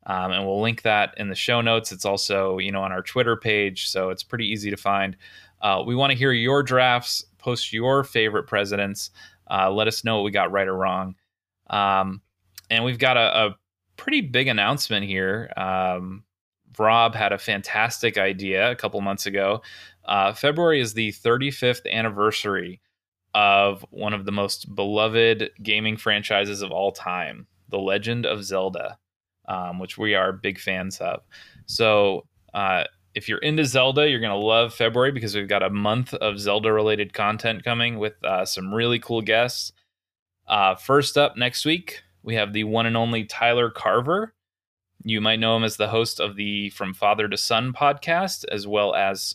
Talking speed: 180 wpm